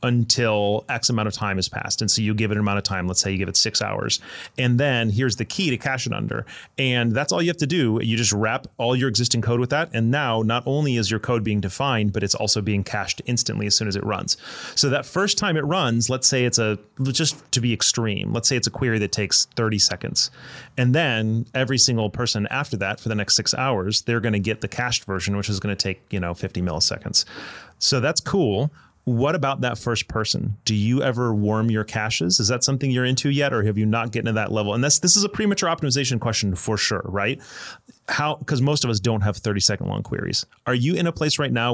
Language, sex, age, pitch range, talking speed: English, male, 30-49, 105-130 Hz, 255 wpm